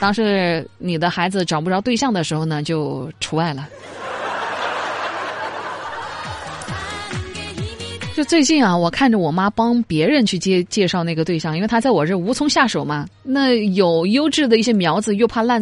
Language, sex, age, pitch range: Chinese, female, 20-39, 170-255 Hz